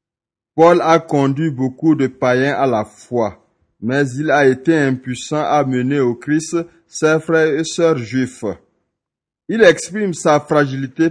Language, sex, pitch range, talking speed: French, male, 125-165 Hz, 145 wpm